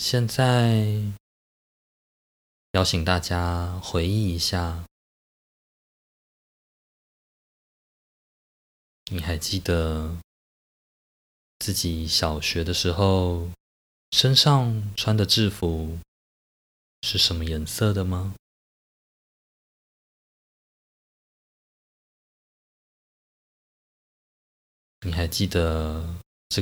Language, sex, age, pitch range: Chinese, male, 20-39, 80-95 Hz